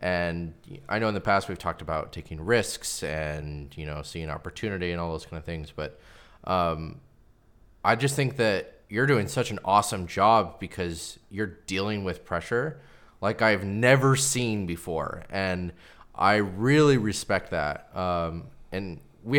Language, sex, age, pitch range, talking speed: English, male, 20-39, 90-125 Hz, 160 wpm